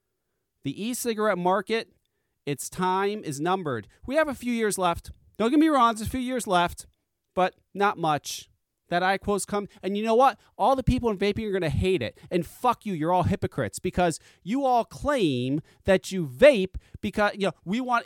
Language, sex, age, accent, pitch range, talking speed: English, male, 30-49, American, 180-265 Hz, 205 wpm